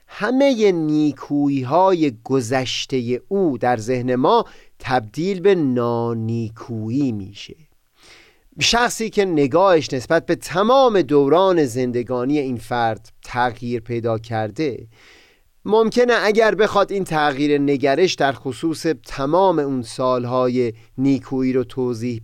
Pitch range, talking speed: 125-175 Hz, 105 wpm